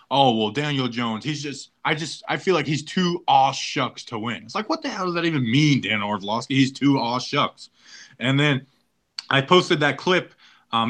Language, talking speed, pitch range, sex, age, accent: English, 205 wpm, 125-160 Hz, male, 20-39, American